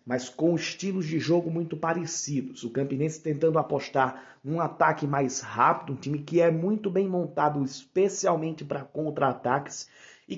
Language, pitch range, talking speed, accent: Portuguese, 135-175 Hz, 150 wpm, Brazilian